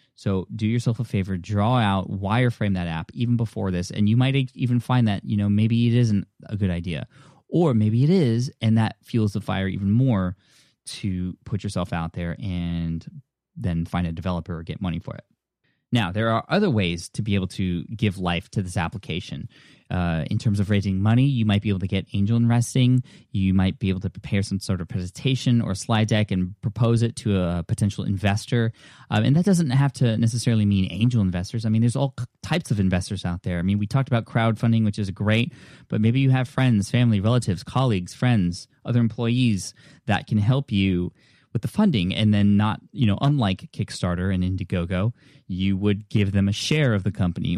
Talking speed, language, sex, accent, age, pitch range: 205 wpm, English, male, American, 20-39, 95-120 Hz